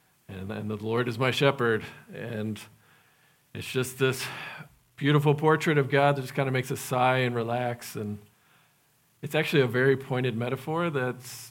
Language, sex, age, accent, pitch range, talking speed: English, male, 40-59, American, 115-145 Hz, 165 wpm